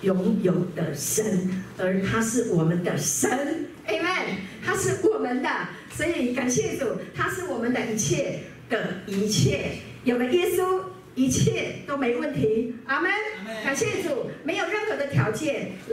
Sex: female